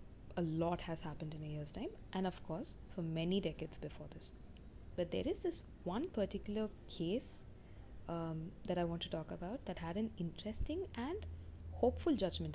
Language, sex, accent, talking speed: English, female, Indian, 175 wpm